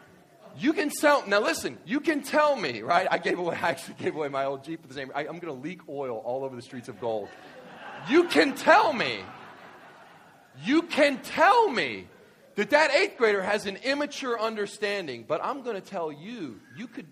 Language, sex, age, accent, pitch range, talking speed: English, male, 40-59, American, 125-205 Hz, 200 wpm